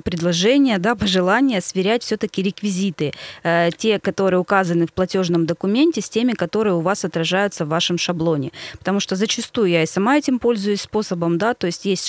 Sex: female